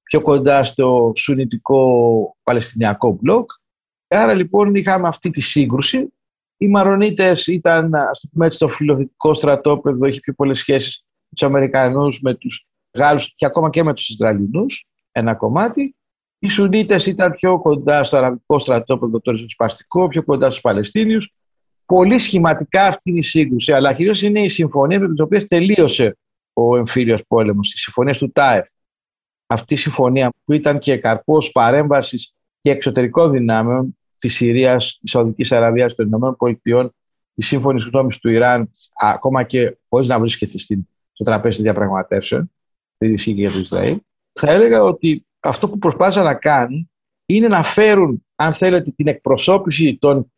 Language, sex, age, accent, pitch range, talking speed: Greek, male, 50-69, native, 125-170 Hz, 145 wpm